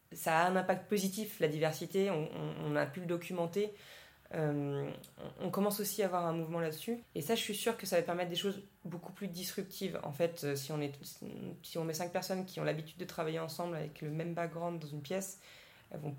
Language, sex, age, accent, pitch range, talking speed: French, female, 20-39, French, 155-180 Hz, 235 wpm